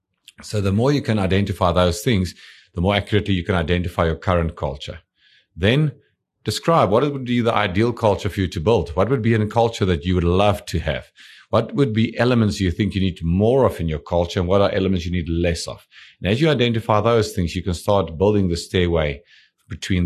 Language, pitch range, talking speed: English, 85-110 Hz, 220 wpm